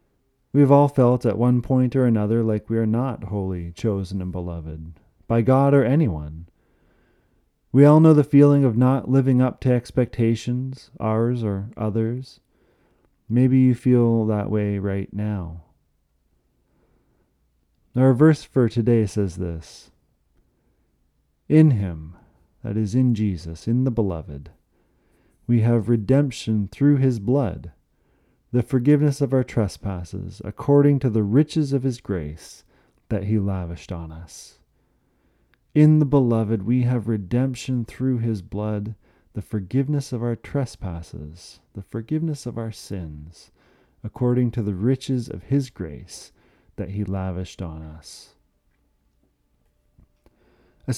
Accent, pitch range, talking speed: American, 95-125 Hz, 130 wpm